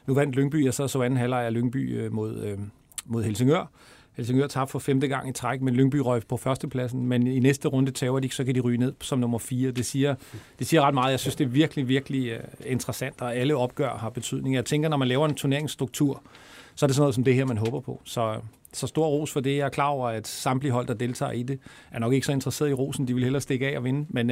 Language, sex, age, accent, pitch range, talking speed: Danish, male, 40-59, native, 115-135 Hz, 270 wpm